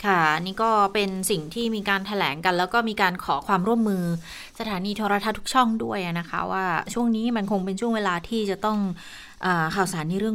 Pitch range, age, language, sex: 165-215 Hz, 20-39, Thai, female